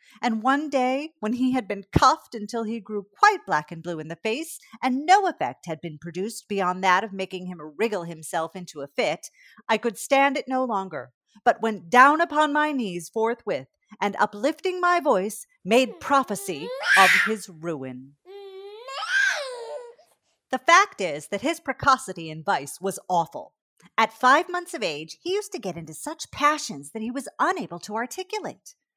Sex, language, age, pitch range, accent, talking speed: female, English, 40-59, 195-320 Hz, American, 175 wpm